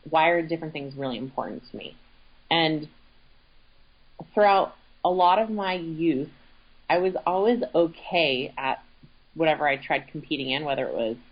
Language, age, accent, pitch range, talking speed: English, 30-49, American, 140-175 Hz, 150 wpm